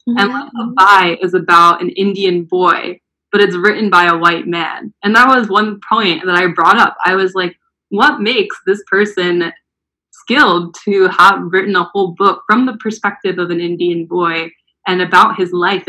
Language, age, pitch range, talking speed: English, 20-39, 175-225 Hz, 190 wpm